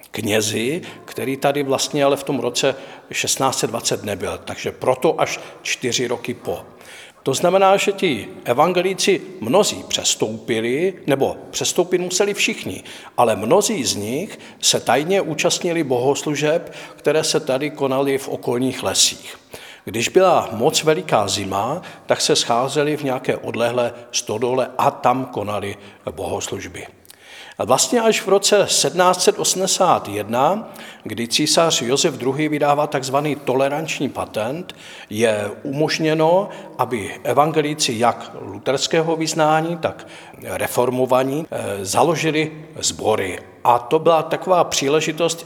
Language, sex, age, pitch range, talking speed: Czech, male, 50-69, 130-160 Hz, 115 wpm